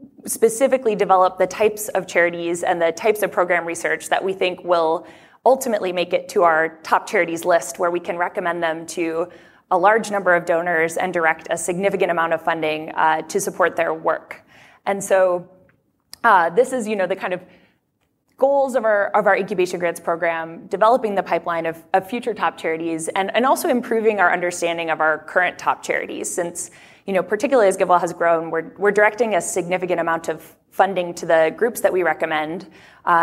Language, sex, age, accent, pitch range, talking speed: English, female, 20-39, American, 170-205 Hz, 195 wpm